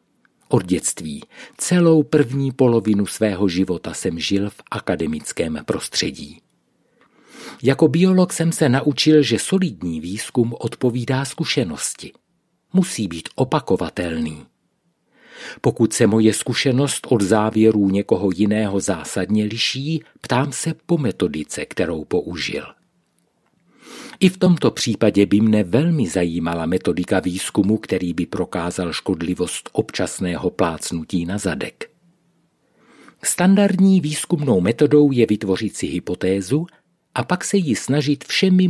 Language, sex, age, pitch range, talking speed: Czech, male, 50-69, 100-160 Hz, 110 wpm